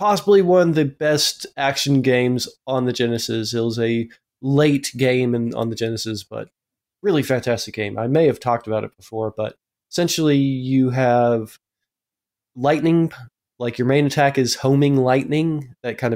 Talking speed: 165 wpm